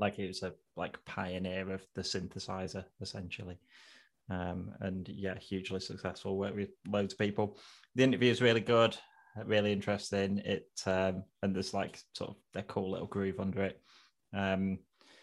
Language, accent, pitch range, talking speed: English, British, 95-105 Hz, 160 wpm